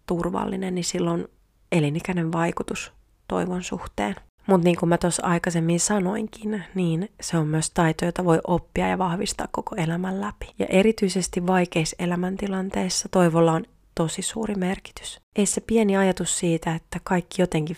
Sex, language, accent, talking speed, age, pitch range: female, Finnish, native, 150 wpm, 30-49, 160-190 Hz